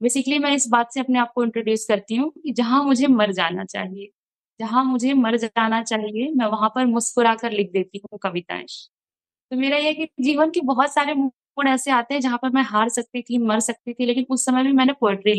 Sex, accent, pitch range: female, native, 235-280 Hz